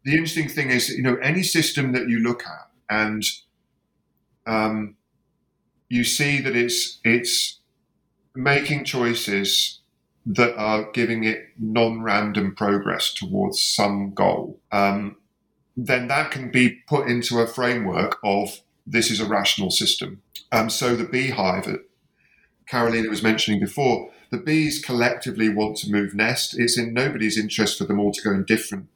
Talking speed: 150 wpm